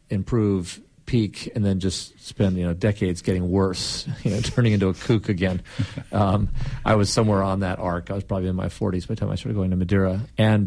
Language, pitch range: English, 90-110 Hz